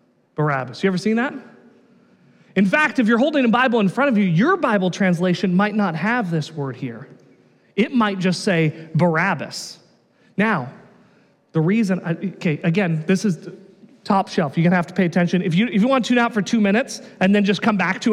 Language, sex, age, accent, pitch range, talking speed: English, male, 30-49, American, 185-260 Hz, 210 wpm